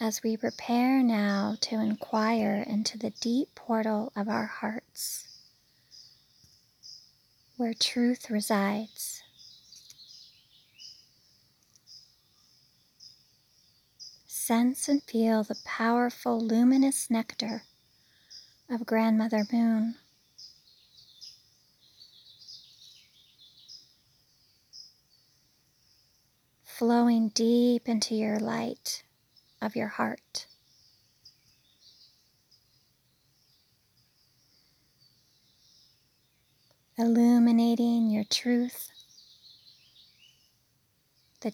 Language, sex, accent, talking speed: English, female, American, 55 wpm